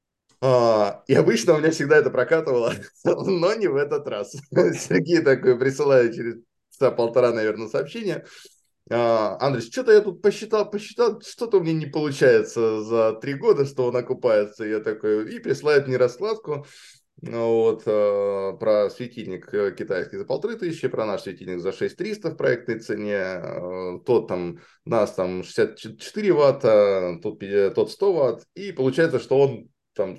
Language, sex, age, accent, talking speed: Russian, male, 20-39, native, 145 wpm